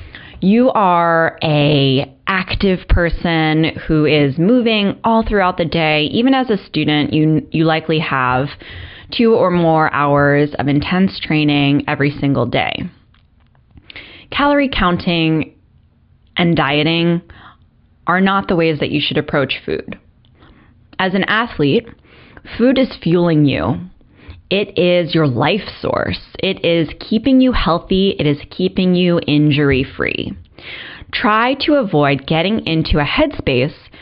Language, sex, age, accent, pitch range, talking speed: English, female, 20-39, American, 145-185 Hz, 130 wpm